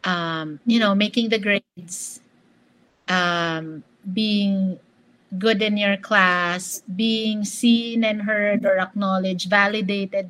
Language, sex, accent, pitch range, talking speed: English, female, Filipino, 185-225 Hz, 110 wpm